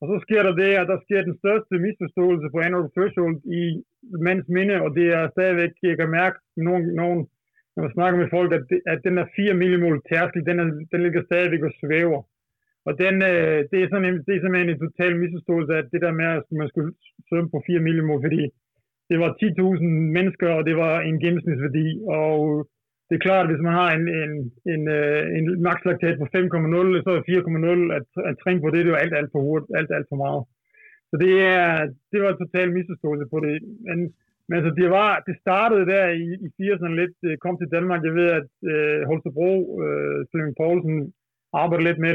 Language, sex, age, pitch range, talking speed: Danish, male, 20-39, 155-180 Hz, 210 wpm